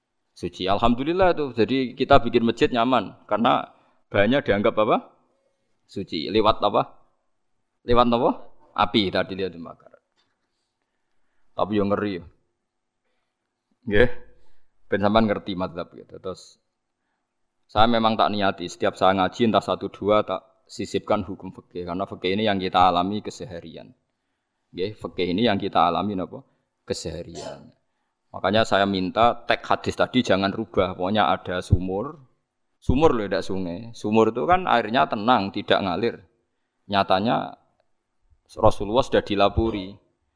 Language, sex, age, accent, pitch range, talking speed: Indonesian, male, 20-39, native, 95-115 Hz, 125 wpm